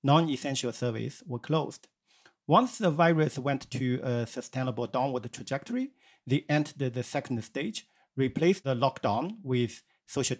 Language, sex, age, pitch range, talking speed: English, male, 50-69, 120-155 Hz, 135 wpm